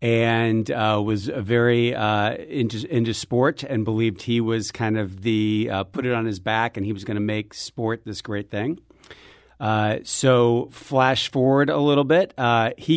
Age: 50-69